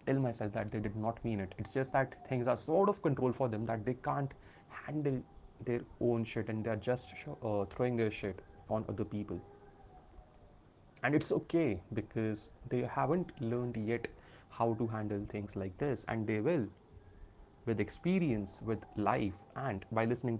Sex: male